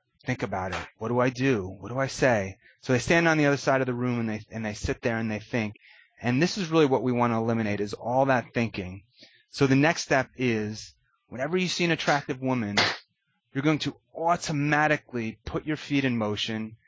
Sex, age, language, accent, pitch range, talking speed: male, 30-49, English, American, 110-140 Hz, 225 wpm